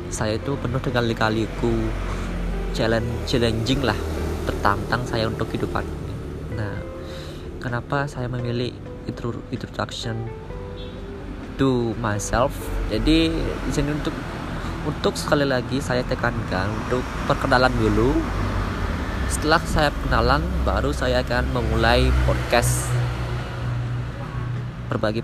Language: Indonesian